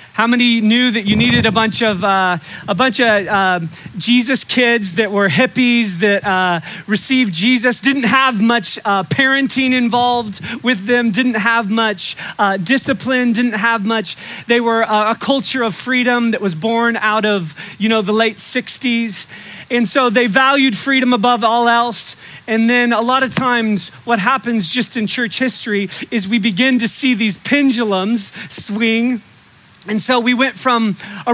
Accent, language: American, English